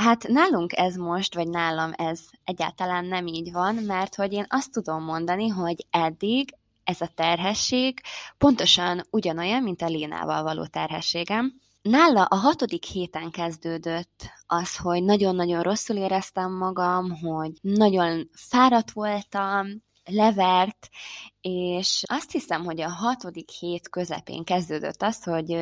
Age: 20-39